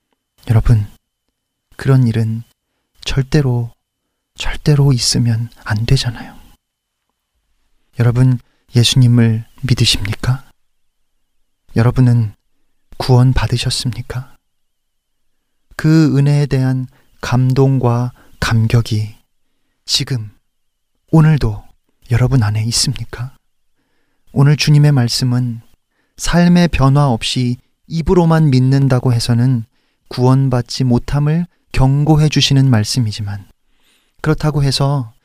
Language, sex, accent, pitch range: Korean, male, native, 120-145 Hz